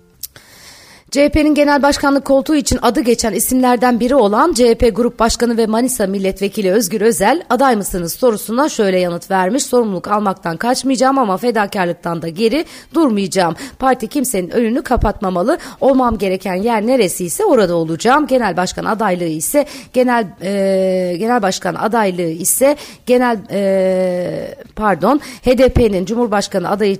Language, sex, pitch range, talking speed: Turkish, female, 180-245 Hz, 130 wpm